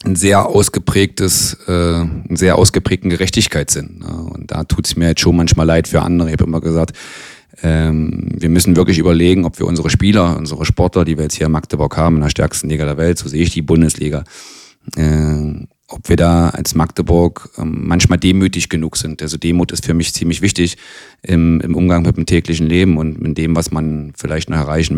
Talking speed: 200 wpm